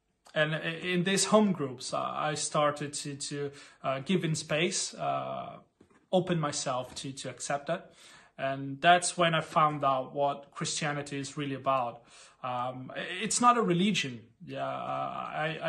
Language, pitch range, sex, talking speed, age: German, 140-170 Hz, male, 145 wpm, 30-49